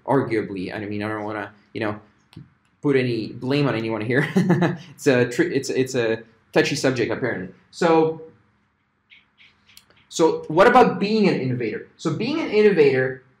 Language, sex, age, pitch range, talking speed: English, male, 20-39, 130-170 Hz, 155 wpm